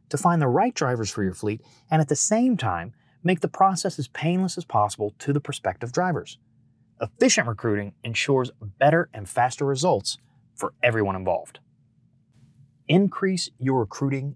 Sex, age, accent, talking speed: male, 30-49, American, 155 wpm